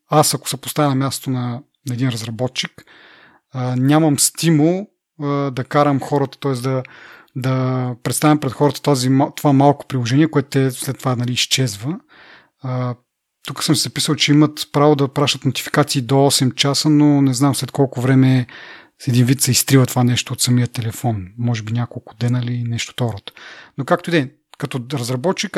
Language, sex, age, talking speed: Bulgarian, male, 30-49, 165 wpm